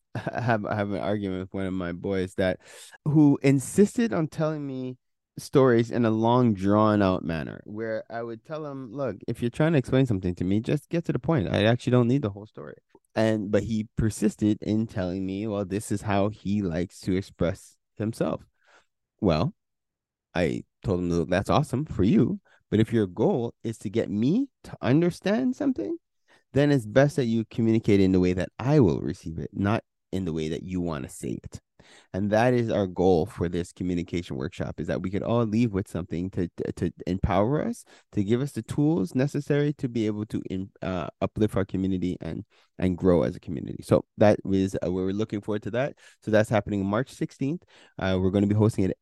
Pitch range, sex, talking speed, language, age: 95-130 Hz, male, 210 wpm, English, 20-39